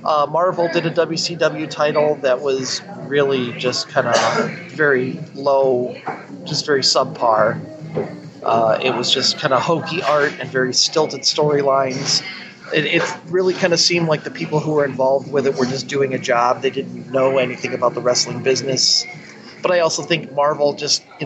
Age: 30-49